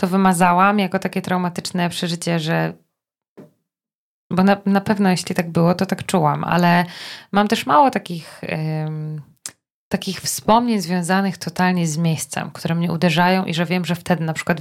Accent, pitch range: native, 170-200 Hz